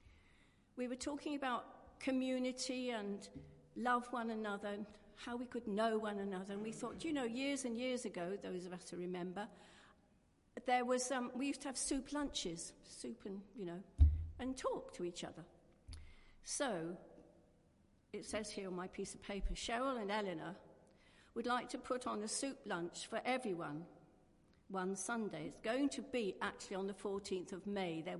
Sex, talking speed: female, 175 wpm